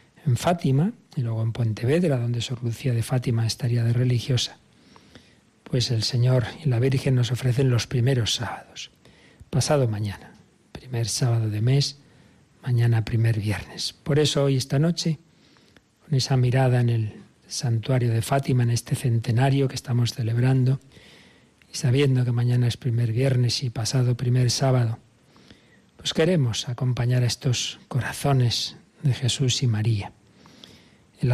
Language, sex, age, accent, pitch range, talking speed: Spanish, male, 40-59, Spanish, 115-135 Hz, 145 wpm